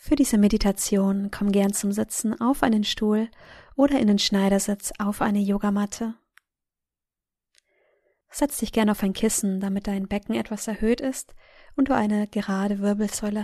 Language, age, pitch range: German, 20-39, 205-235 Hz